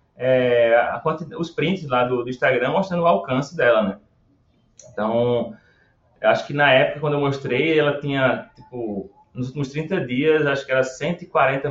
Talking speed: 170 wpm